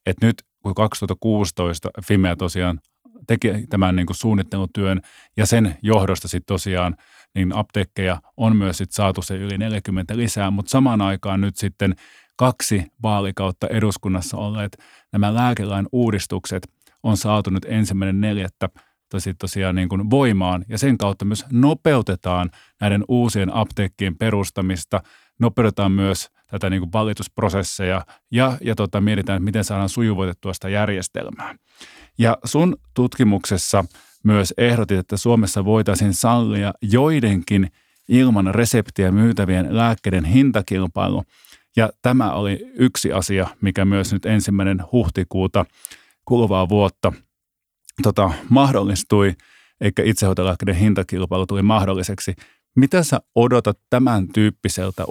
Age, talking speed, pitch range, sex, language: 30-49, 115 wpm, 95-110 Hz, male, Finnish